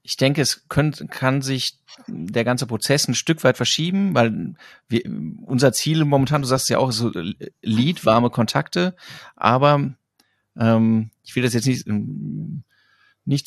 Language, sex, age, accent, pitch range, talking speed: German, male, 30-49, German, 115-140 Hz, 160 wpm